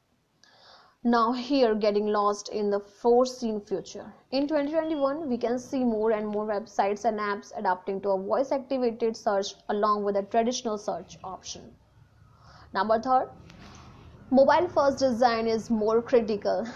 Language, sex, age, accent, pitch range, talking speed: Hindi, female, 20-39, native, 205-255 Hz, 145 wpm